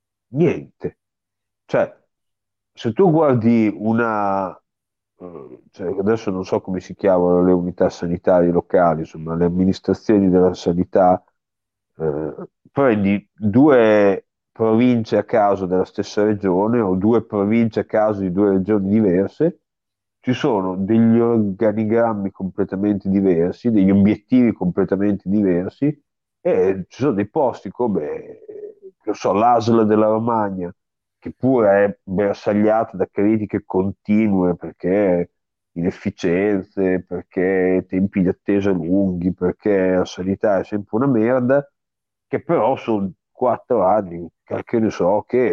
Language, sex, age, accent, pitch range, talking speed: Italian, male, 40-59, native, 95-115 Hz, 120 wpm